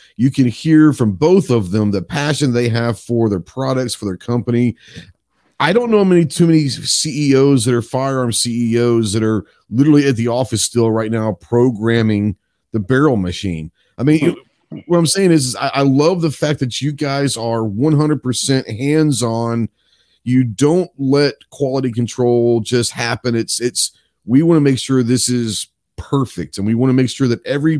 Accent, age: American, 40-59